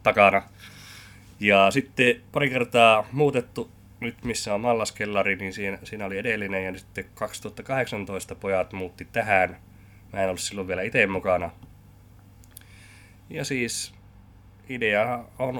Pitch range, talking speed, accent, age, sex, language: 90-105 Hz, 125 wpm, native, 20-39, male, Finnish